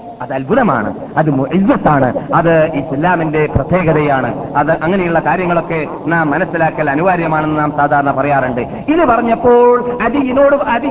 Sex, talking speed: male, 115 wpm